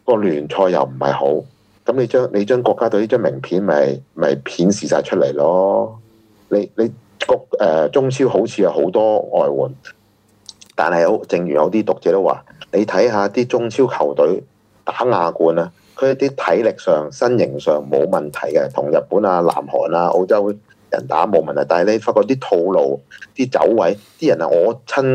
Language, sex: Chinese, male